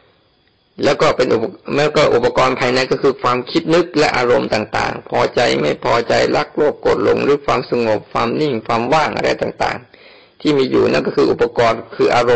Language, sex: Thai, male